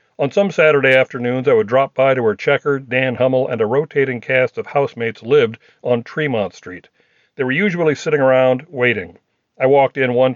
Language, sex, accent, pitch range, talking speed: English, male, American, 125-185 Hz, 190 wpm